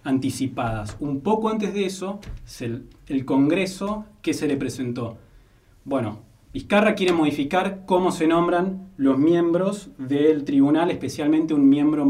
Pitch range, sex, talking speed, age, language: 130-170 Hz, male, 130 wpm, 20-39, Spanish